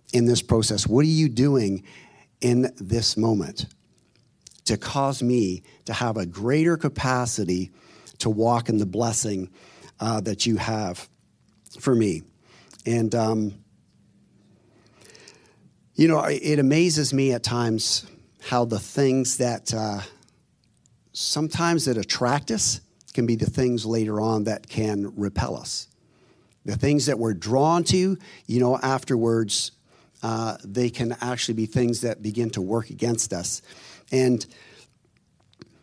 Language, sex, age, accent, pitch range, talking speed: English, male, 50-69, American, 110-135 Hz, 130 wpm